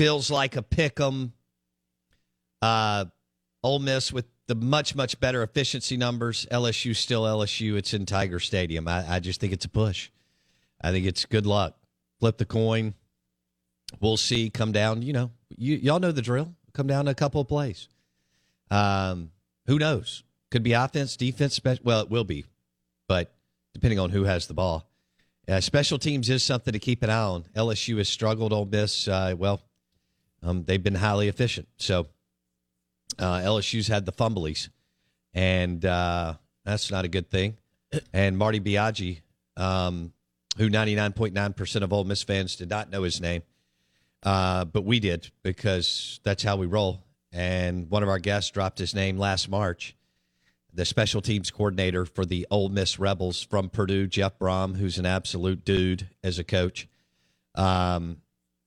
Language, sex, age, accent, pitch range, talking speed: English, male, 50-69, American, 85-110 Hz, 165 wpm